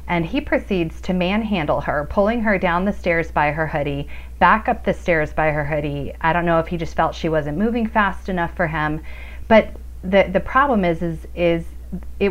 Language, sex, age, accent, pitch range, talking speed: English, female, 30-49, American, 155-190 Hz, 210 wpm